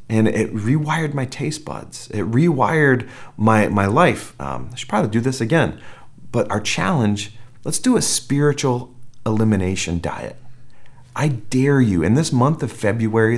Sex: male